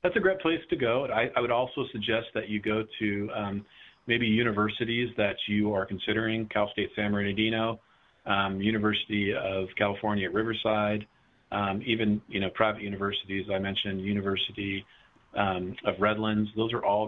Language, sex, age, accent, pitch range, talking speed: English, male, 40-59, American, 100-110 Hz, 165 wpm